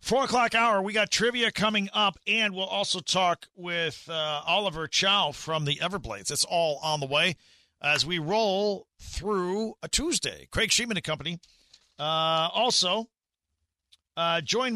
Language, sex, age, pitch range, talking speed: English, male, 40-59, 135-205 Hz, 155 wpm